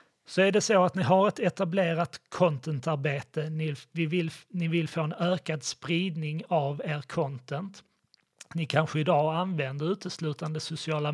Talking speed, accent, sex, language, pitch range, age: 150 wpm, native, male, Swedish, 140-165 Hz, 30-49